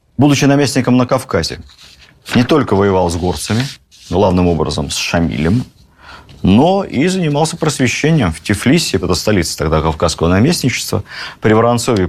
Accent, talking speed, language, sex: native, 130 wpm, Russian, male